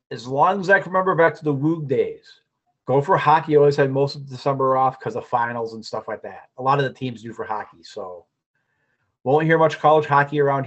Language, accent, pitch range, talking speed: English, American, 130-160 Hz, 235 wpm